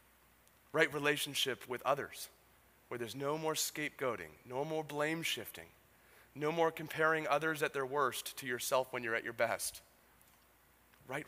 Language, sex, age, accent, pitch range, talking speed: English, male, 30-49, American, 100-145 Hz, 150 wpm